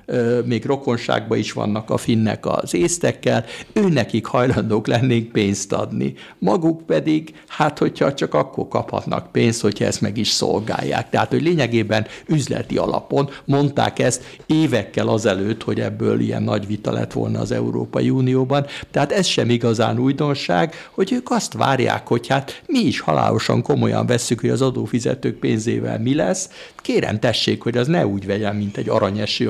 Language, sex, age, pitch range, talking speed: Hungarian, male, 60-79, 110-130 Hz, 155 wpm